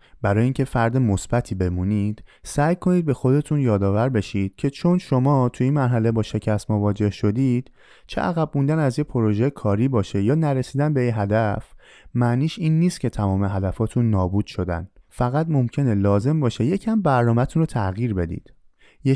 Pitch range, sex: 105-145 Hz, male